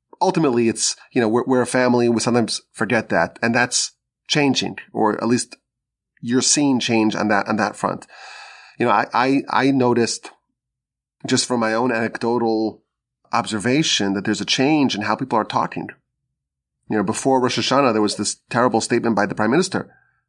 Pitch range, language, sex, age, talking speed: 110-130 Hz, English, male, 30-49, 185 wpm